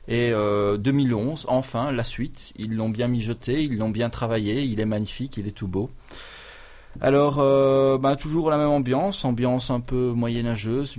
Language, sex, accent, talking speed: French, male, French, 175 wpm